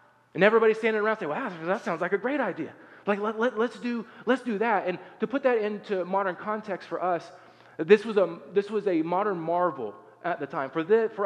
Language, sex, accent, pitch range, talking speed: English, male, American, 160-215 Hz, 230 wpm